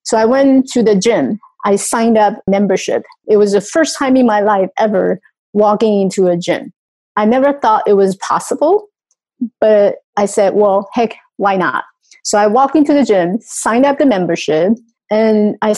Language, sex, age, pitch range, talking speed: English, female, 30-49, 200-260 Hz, 185 wpm